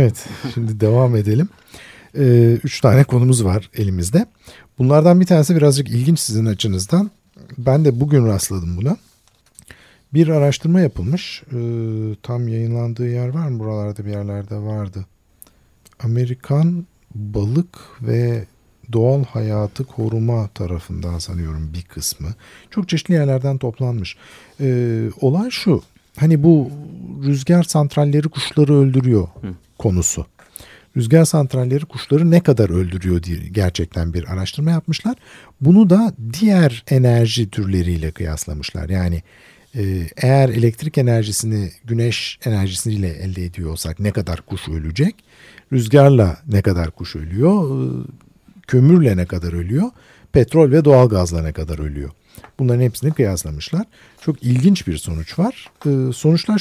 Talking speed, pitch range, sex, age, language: 115 wpm, 95-145 Hz, male, 50-69, Turkish